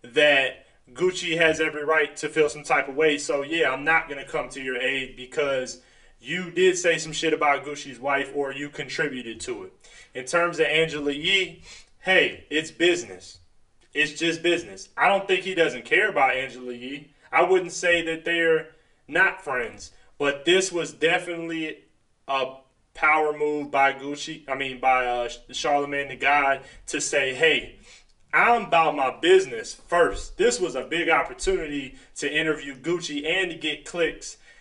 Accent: American